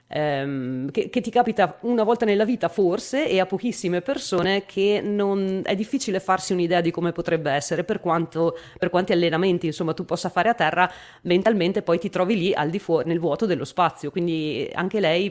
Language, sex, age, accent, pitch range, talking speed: Italian, female, 30-49, native, 155-200 Hz, 190 wpm